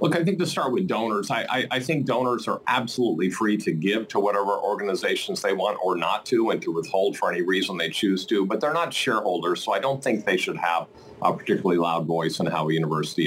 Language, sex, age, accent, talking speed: English, male, 50-69, American, 240 wpm